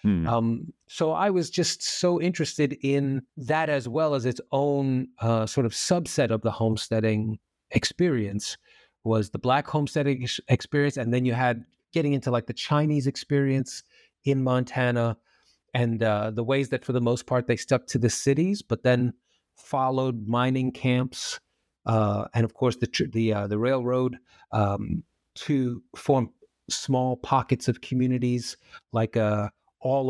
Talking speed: 155 wpm